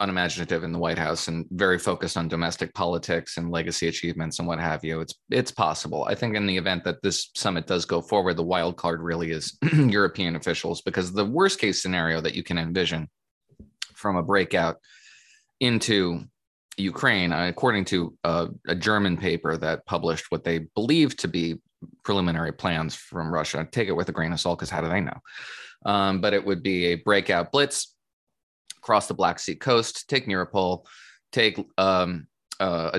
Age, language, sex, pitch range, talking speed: 20-39, English, male, 85-100 Hz, 185 wpm